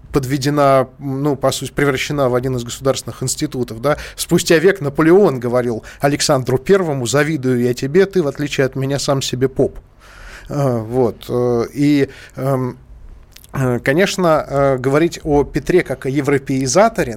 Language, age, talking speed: Russian, 20-39, 130 wpm